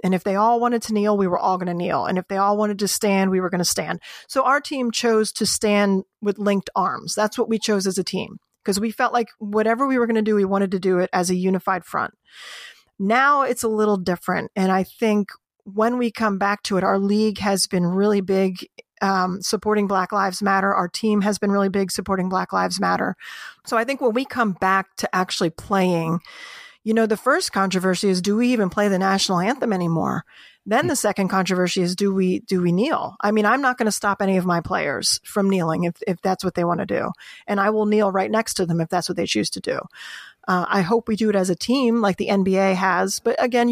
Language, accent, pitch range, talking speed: English, American, 190-225 Hz, 245 wpm